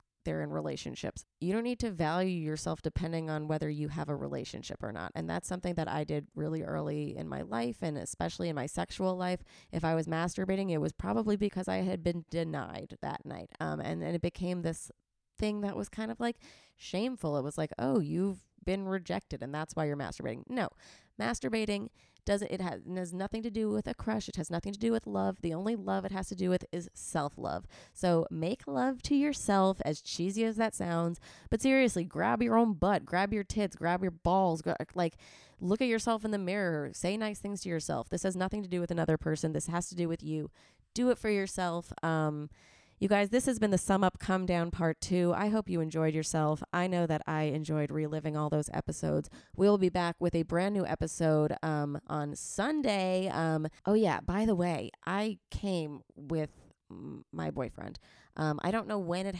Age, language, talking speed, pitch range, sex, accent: 20-39, English, 215 wpm, 155-200 Hz, female, American